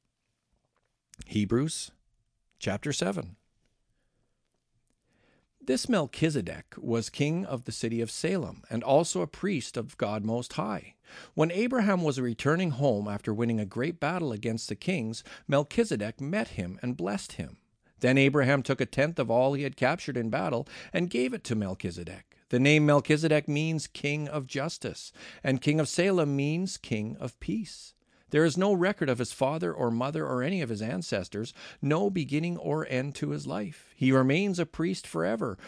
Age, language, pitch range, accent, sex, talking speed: 50-69, English, 115-155 Hz, American, male, 165 wpm